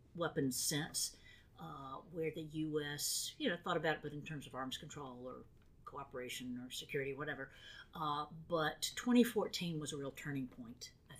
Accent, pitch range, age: American, 140-185 Hz, 50-69